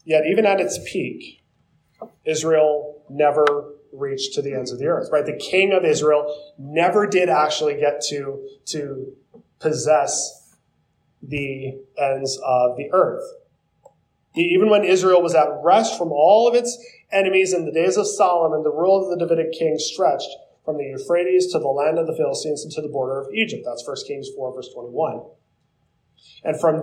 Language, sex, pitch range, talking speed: English, male, 145-185 Hz, 170 wpm